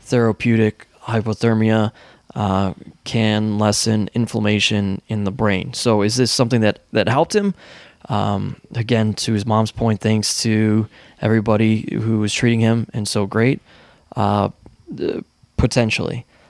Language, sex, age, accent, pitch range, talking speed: English, male, 20-39, American, 110-120 Hz, 125 wpm